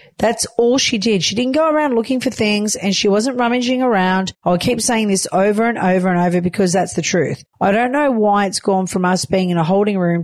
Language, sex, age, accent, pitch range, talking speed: English, female, 40-59, Australian, 175-235 Hz, 245 wpm